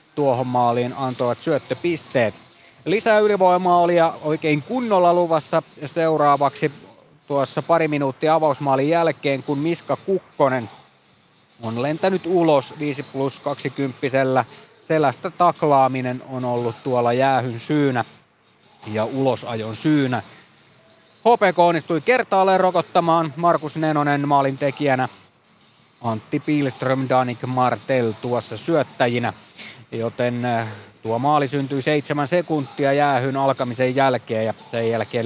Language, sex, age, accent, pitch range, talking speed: Finnish, male, 20-39, native, 125-160 Hz, 105 wpm